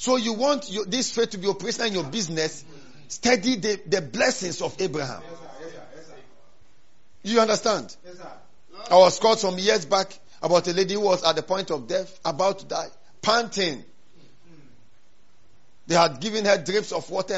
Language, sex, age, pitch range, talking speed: English, male, 50-69, 175-230 Hz, 160 wpm